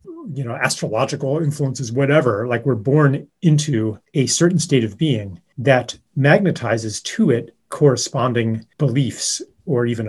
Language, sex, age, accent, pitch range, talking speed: English, male, 40-59, American, 120-160 Hz, 130 wpm